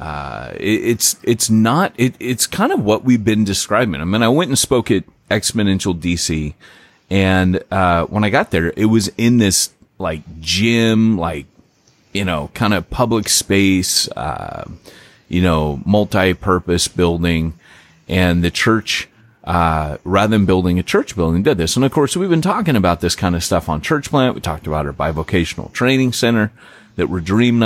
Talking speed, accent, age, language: 180 wpm, American, 30-49, English